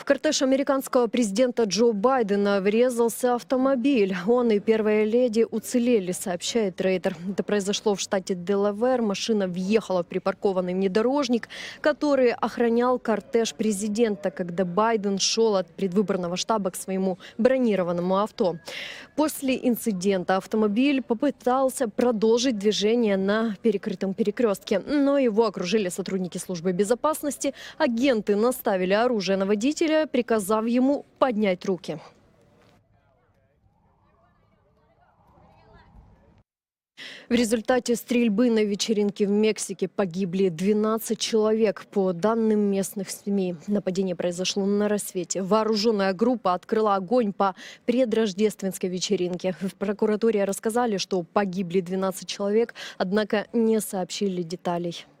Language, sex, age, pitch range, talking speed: Russian, female, 20-39, 195-240 Hz, 110 wpm